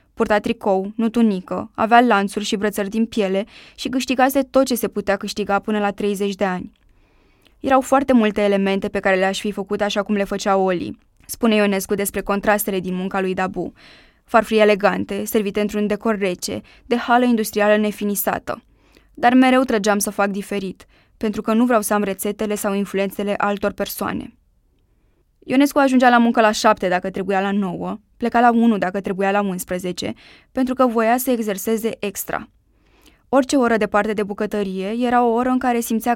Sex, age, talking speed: female, 20-39, 175 wpm